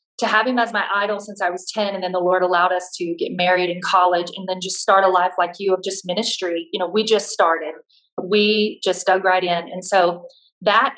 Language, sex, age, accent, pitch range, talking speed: English, female, 40-59, American, 185-215 Hz, 245 wpm